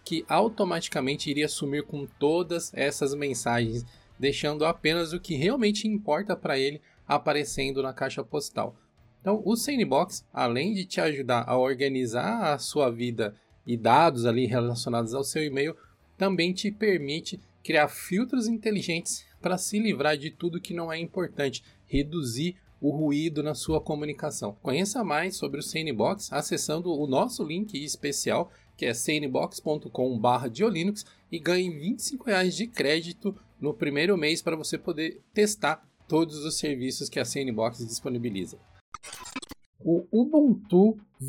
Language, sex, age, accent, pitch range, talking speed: Portuguese, male, 20-39, Brazilian, 135-195 Hz, 140 wpm